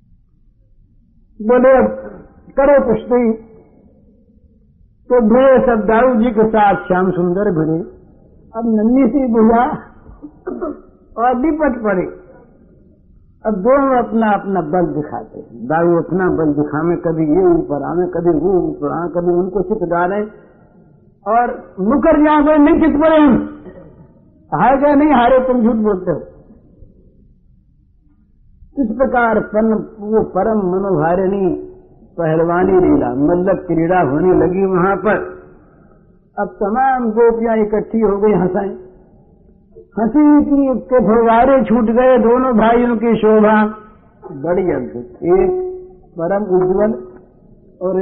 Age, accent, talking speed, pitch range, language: 60-79, native, 120 wpm, 175-245 Hz, Hindi